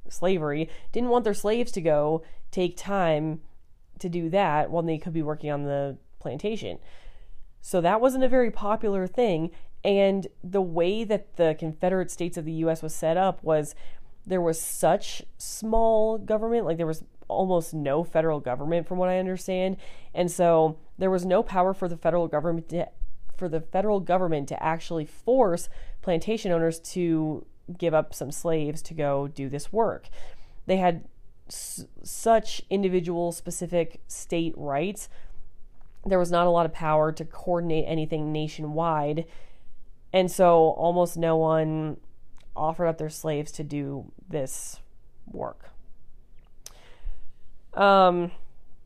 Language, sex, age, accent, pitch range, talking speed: English, female, 30-49, American, 155-185 Hz, 145 wpm